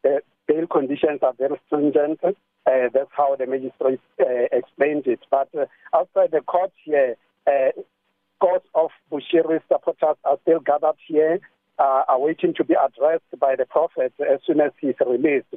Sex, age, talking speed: male, 50-69, 160 wpm